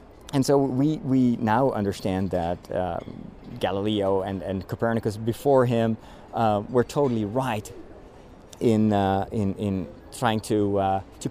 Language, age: English, 30-49